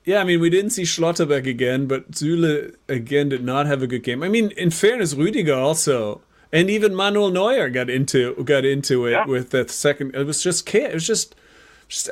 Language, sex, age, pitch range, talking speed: English, male, 30-49, 140-195 Hz, 215 wpm